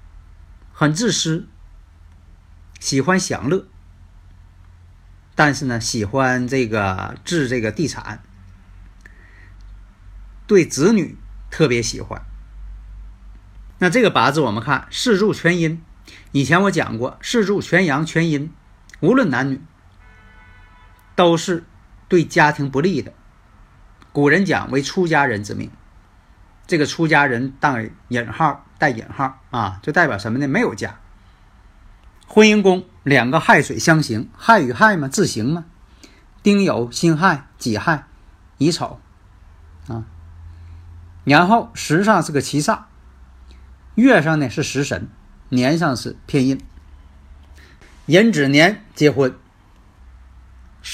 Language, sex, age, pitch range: Chinese, male, 50-69, 90-150 Hz